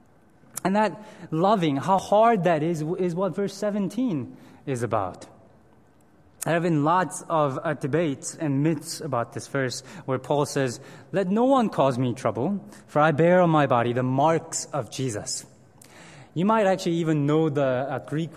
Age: 20-39